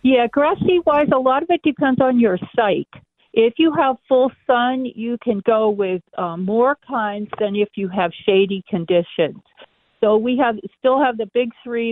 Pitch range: 190-230 Hz